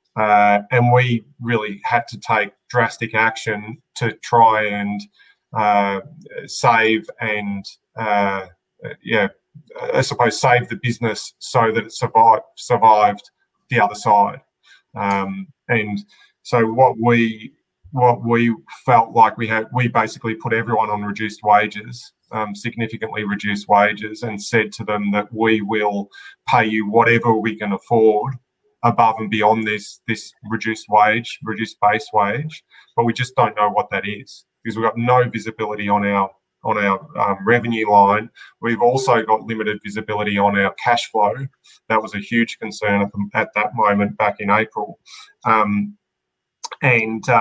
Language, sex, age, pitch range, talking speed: English, male, 30-49, 105-120 Hz, 150 wpm